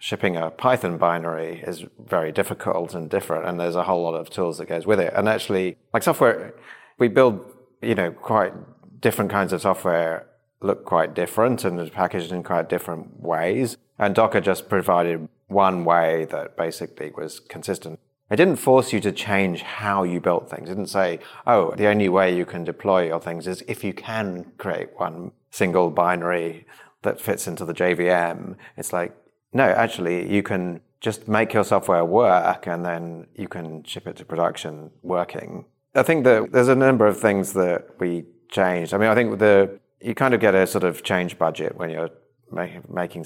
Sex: male